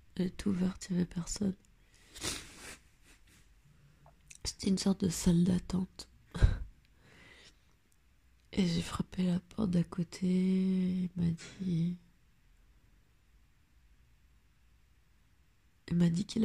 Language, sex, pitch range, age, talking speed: French, female, 160-190 Hz, 30-49, 100 wpm